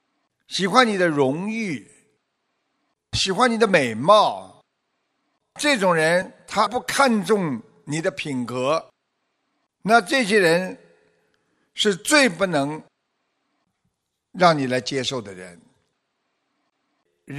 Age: 50-69